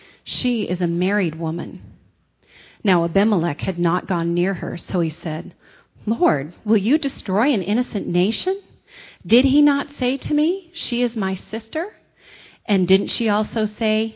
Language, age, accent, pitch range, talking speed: English, 40-59, American, 175-225 Hz, 155 wpm